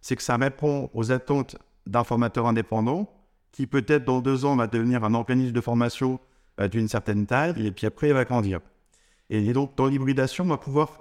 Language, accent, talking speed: French, French, 195 wpm